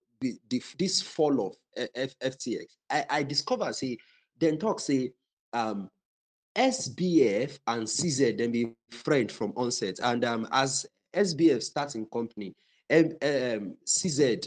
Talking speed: 130 wpm